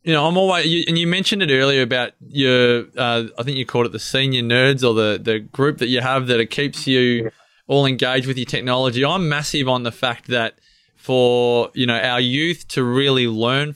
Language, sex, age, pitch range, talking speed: English, male, 20-39, 120-135 Hz, 215 wpm